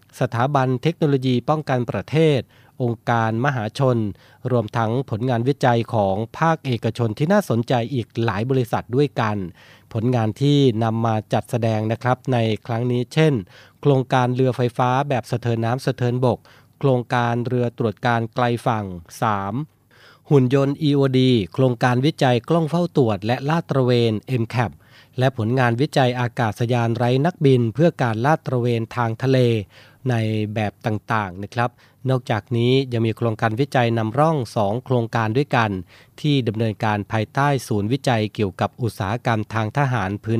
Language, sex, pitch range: Thai, male, 110-130 Hz